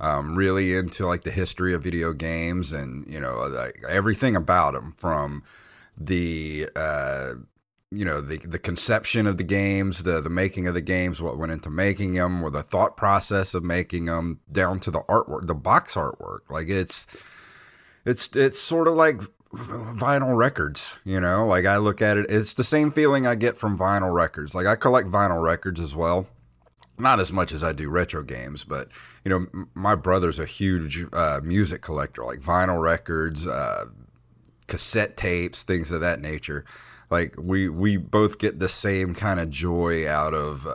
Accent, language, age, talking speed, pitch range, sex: American, English, 30-49, 185 wpm, 85-105 Hz, male